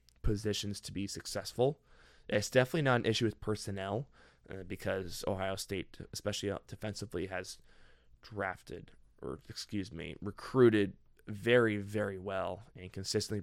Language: English